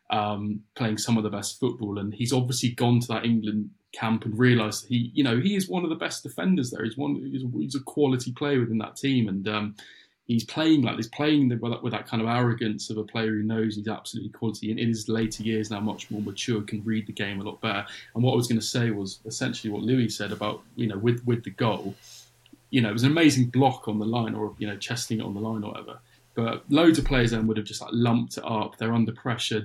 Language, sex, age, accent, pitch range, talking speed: English, male, 20-39, British, 105-125 Hz, 265 wpm